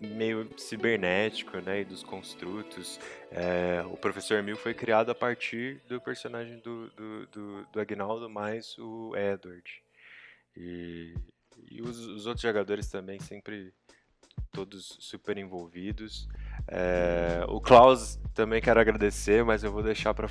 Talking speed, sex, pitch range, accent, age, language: 135 wpm, male, 95-115 Hz, Brazilian, 20-39, Portuguese